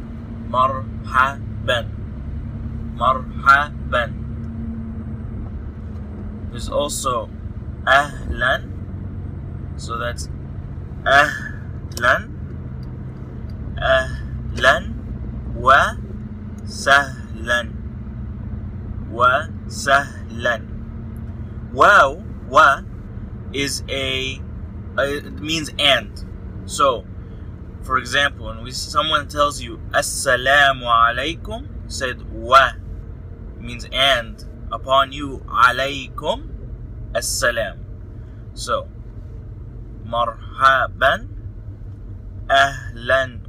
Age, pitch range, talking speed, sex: 20-39, 100-120 Hz, 70 wpm, male